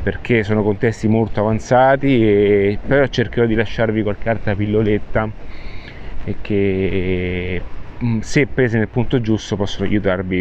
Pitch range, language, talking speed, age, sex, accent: 100-120 Hz, Italian, 125 wpm, 30-49, male, native